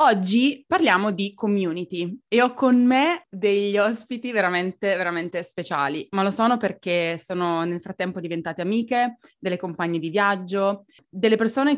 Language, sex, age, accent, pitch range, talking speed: Italian, female, 20-39, native, 175-215 Hz, 145 wpm